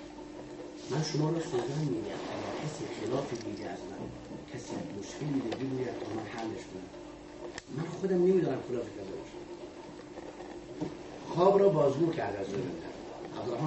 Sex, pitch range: male, 140-195 Hz